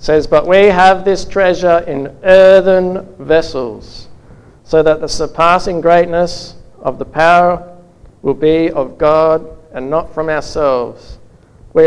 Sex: male